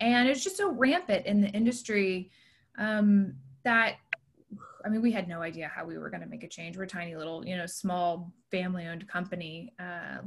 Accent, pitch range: American, 180-230 Hz